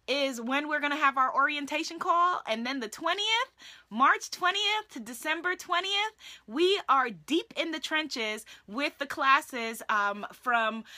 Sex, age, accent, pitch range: female, 20-39, American, 225-280 Hz